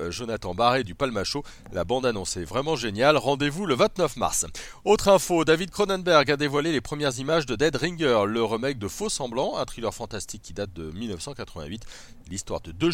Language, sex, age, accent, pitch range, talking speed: French, male, 40-59, French, 125-185 Hz, 185 wpm